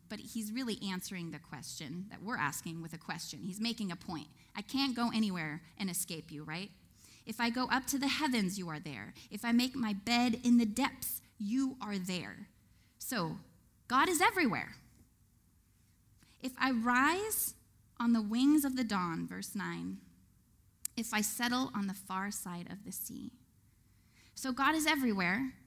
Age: 10-29